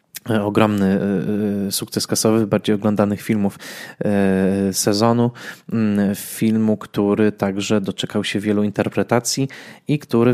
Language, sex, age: Polish, male, 20-39